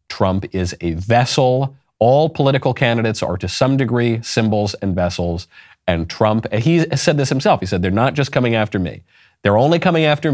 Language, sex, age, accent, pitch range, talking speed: English, male, 40-59, American, 95-130 Hz, 190 wpm